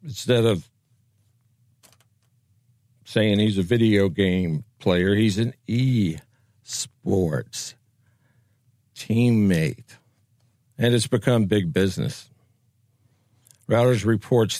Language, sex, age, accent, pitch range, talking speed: English, male, 60-79, American, 105-125 Hz, 80 wpm